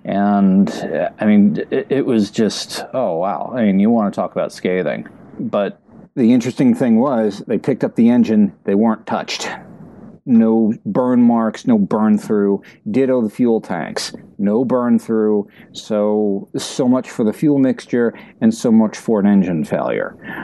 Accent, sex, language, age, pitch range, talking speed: American, male, English, 50-69, 95-130 Hz, 165 wpm